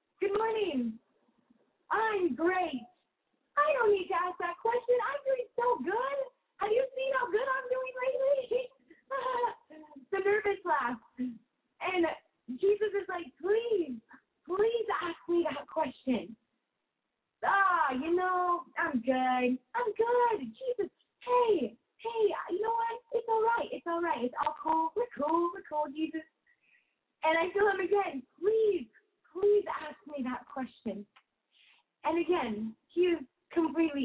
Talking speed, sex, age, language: 140 wpm, female, 30-49, English